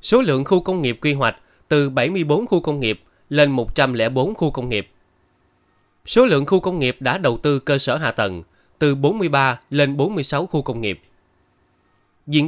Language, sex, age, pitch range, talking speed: Vietnamese, male, 20-39, 115-150 Hz, 180 wpm